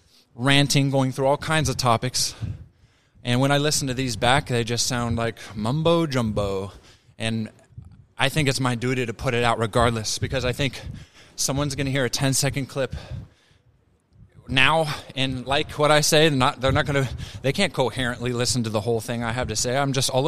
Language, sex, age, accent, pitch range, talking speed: English, male, 20-39, American, 115-135 Hz, 195 wpm